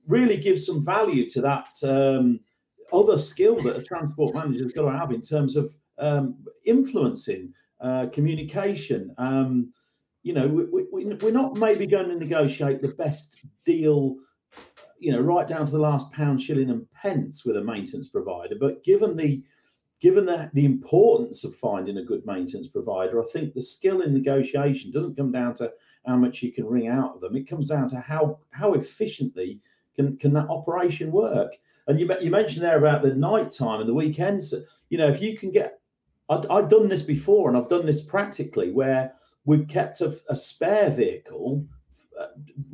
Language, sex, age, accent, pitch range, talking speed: English, male, 40-59, British, 135-180 Hz, 185 wpm